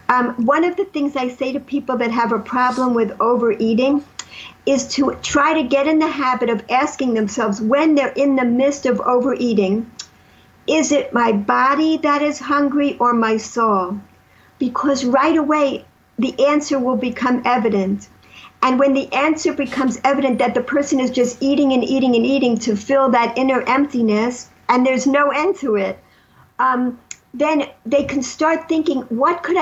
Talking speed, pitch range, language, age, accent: 175 wpm, 240-285 Hz, English, 60-79, American